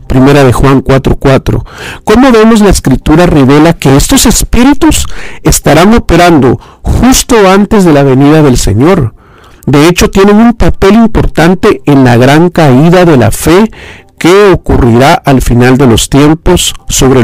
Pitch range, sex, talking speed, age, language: 130-195 Hz, male, 150 wpm, 50-69, Spanish